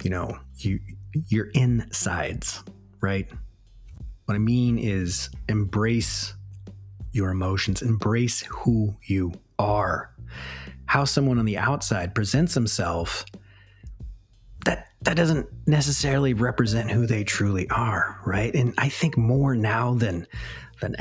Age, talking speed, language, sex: 30-49, 115 wpm, English, male